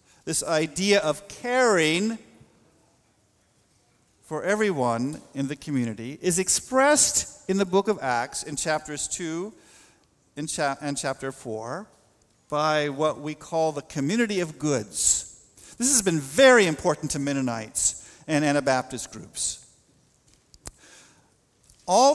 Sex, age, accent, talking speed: male, 50-69, American, 110 wpm